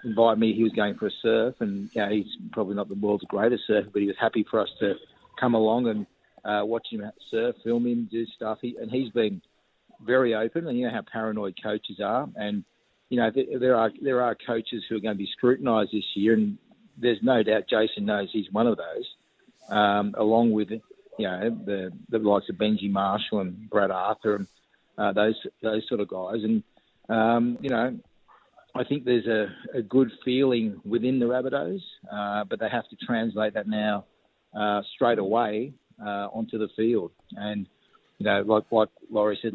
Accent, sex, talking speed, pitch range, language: Australian, male, 205 wpm, 105-125 Hz, English